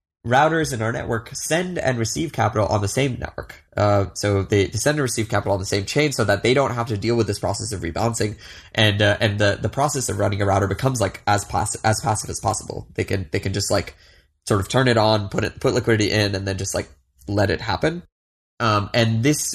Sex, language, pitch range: male, English, 100-120 Hz